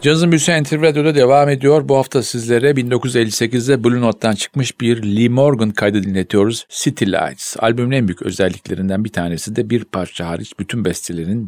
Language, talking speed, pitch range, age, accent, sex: Turkish, 165 wpm, 95-125 Hz, 50-69, native, male